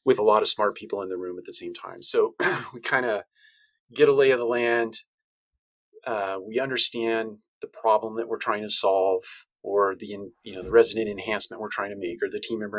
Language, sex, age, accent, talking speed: English, male, 30-49, American, 215 wpm